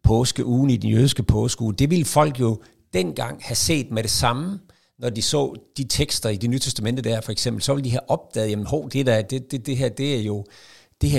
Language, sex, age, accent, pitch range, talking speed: Danish, male, 60-79, native, 110-130 Hz, 230 wpm